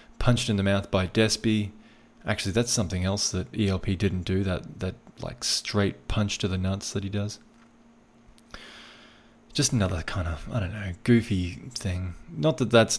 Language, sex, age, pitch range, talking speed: English, male, 20-39, 95-115 Hz, 170 wpm